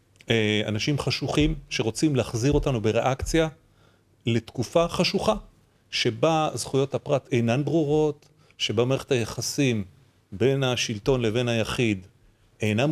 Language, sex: Hebrew, male